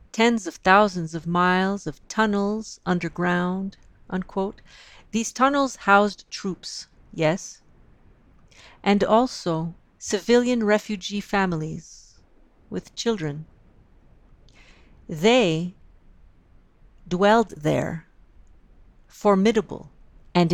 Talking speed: 75 wpm